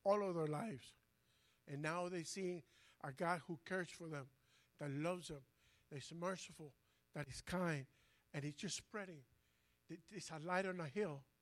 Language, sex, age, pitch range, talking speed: English, male, 60-79, 145-180 Hz, 175 wpm